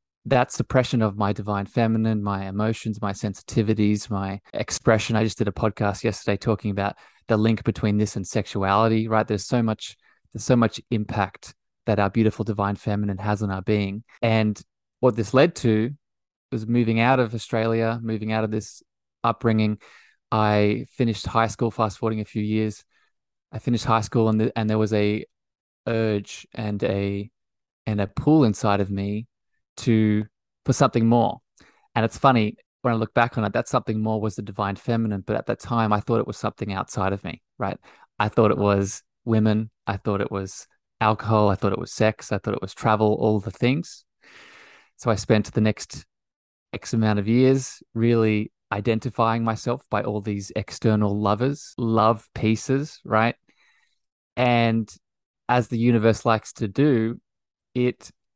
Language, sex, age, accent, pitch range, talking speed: English, male, 20-39, Australian, 105-115 Hz, 175 wpm